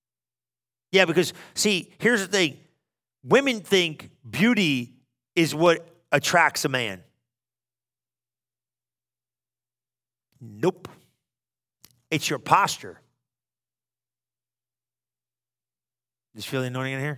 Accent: American